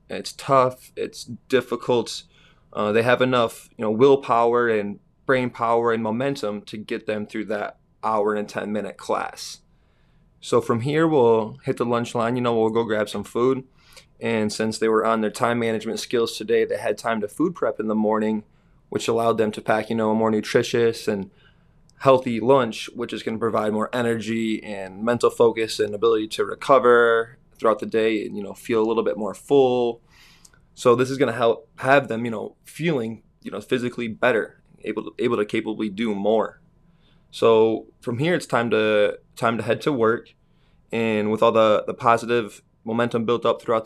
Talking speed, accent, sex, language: 195 wpm, American, male, English